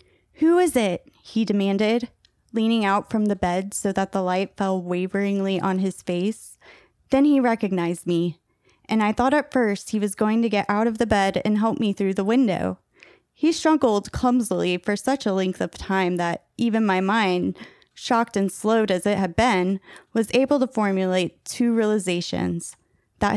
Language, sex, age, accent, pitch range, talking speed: English, female, 20-39, American, 195-255 Hz, 180 wpm